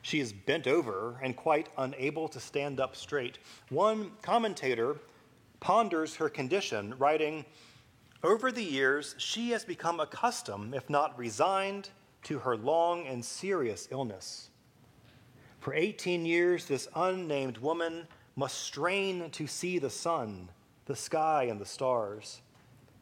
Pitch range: 120-165 Hz